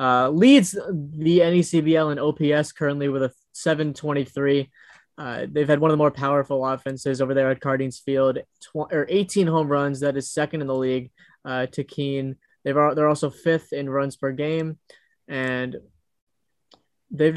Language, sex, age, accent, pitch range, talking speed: English, male, 20-39, American, 135-155 Hz, 160 wpm